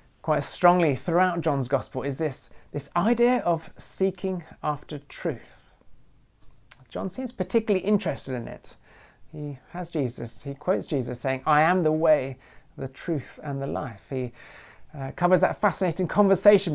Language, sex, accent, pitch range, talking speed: English, male, British, 135-180 Hz, 145 wpm